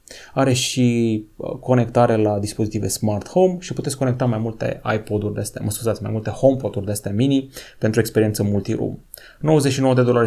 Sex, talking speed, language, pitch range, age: male, 150 wpm, Romanian, 110-145 Hz, 30-49